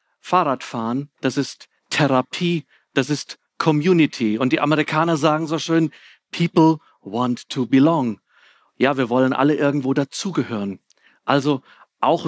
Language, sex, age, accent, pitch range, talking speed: German, male, 40-59, German, 135-170 Hz, 120 wpm